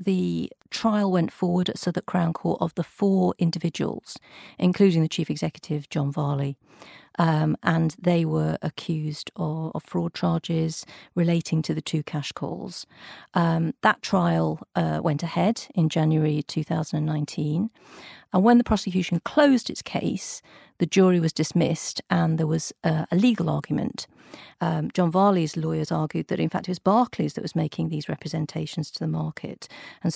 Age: 50-69